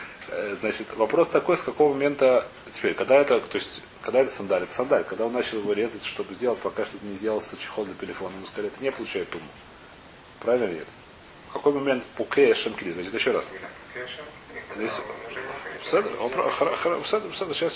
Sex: male